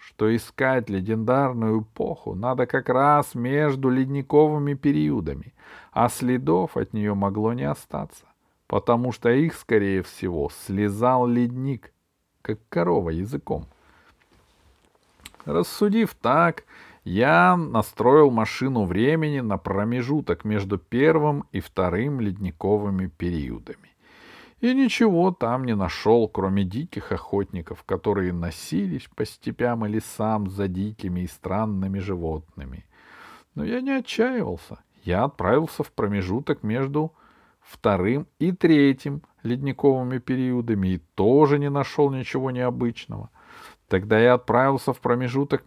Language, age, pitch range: Russian, 40-59, 105-140 Hz